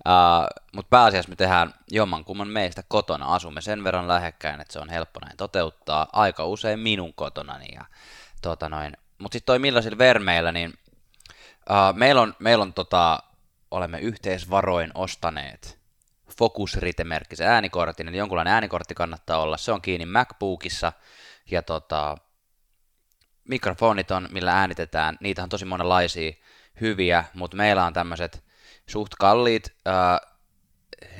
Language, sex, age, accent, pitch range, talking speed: Finnish, male, 20-39, native, 85-100 Hz, 130 wpm